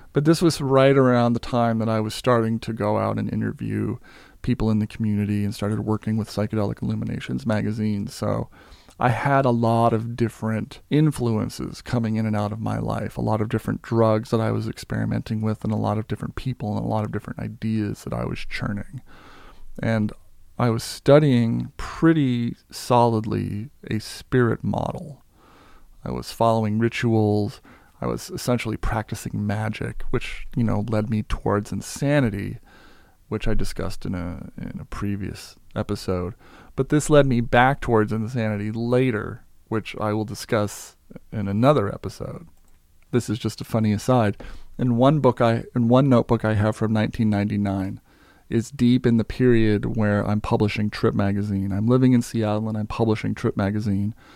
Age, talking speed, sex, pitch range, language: 40-59, 170 wpm, male, 105-120 Hz, English